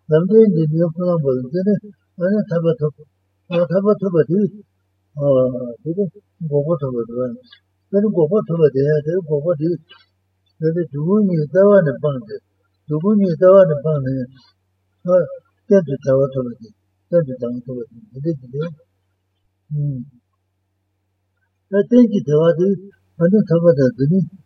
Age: 60-79